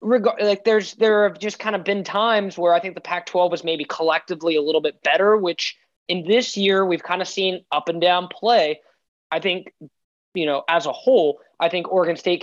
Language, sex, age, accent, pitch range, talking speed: English, male, 20-39, American, 150-185 Hz, 215 wpm